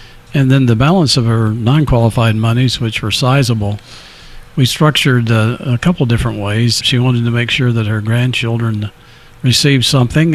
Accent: American